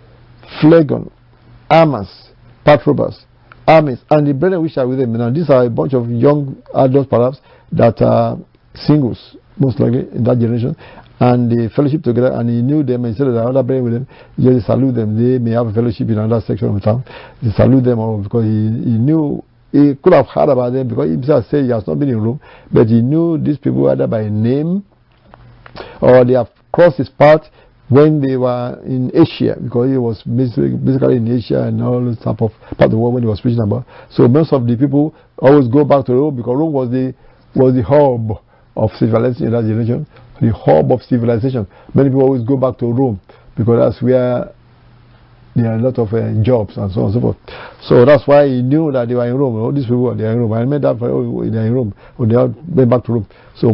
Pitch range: 115-135 Hz